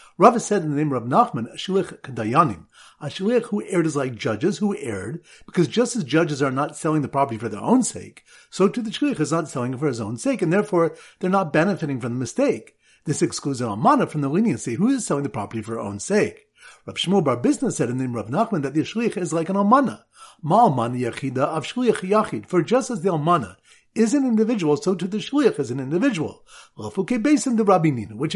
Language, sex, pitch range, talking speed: English, male, 145-220 Hz, 230 wpm